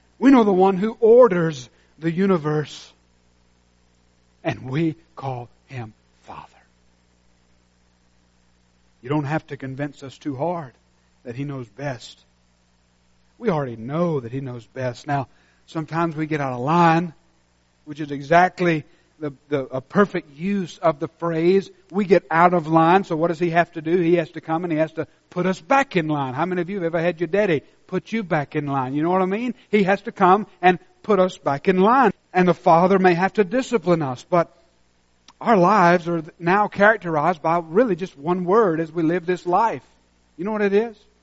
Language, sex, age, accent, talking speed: English, male, 60-79, American, 190 wpm